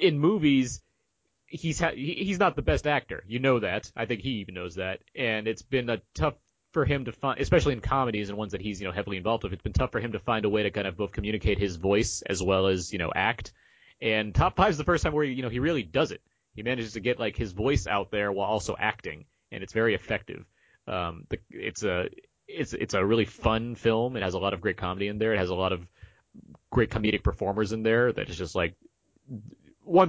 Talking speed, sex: 250 wpm, male